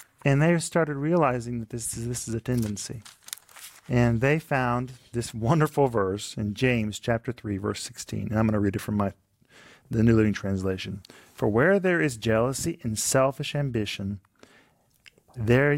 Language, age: English, 40-59